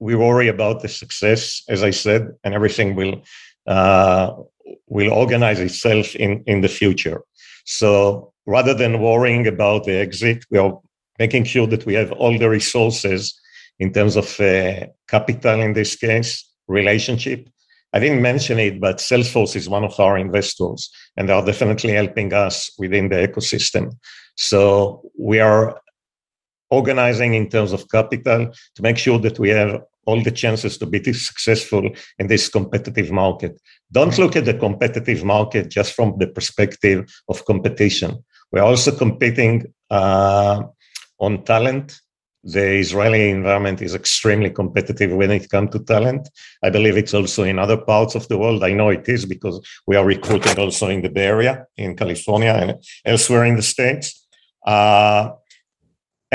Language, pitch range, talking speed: English, 100-115 Hz, 160 wpm